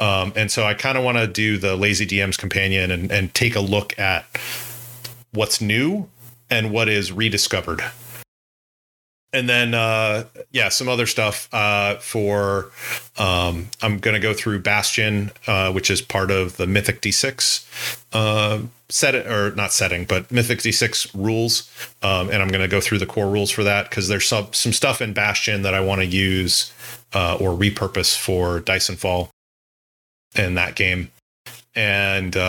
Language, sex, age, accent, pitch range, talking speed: English, male, 30-49, American, 95-120 Hz, 170 wpm